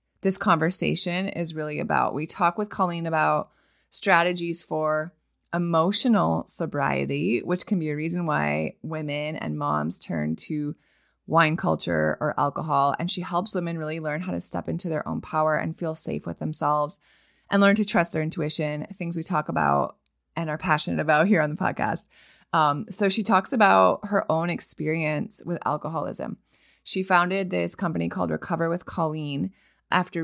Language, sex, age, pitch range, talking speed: English, female, 20-39, 150-185 Hz, 165 wpm